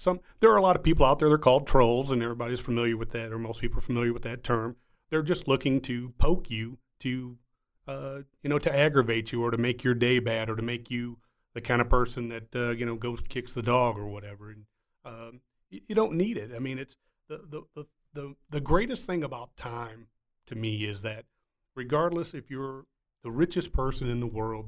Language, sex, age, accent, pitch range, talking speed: English, male, 40-59, American, 115-150 Hz, 230 wpm